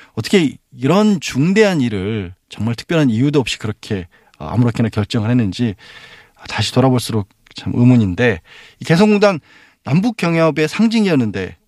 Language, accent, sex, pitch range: Korean, native, male, 105-155 Hz